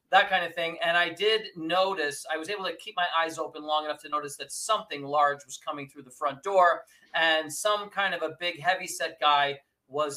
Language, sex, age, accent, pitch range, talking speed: English, male, 40-59, American, 145-180 Hz, 225 wpm